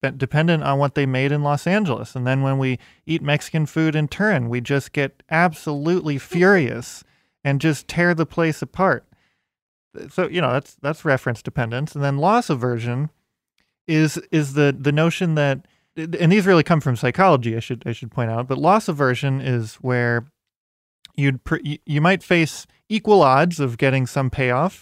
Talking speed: 175 wpm